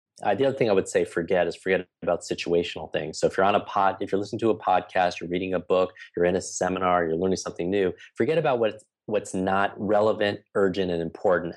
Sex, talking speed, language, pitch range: male, 245 wpm, English, 85-105 Hz